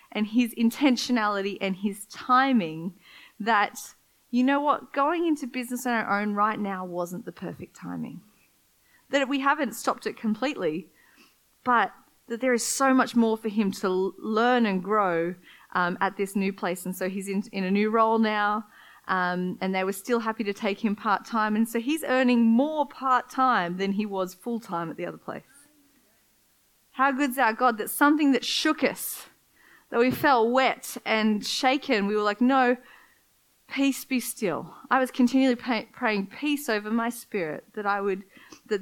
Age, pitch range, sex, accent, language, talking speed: 30-49, 200-250 Hz, female, Australian, English, 175 wpm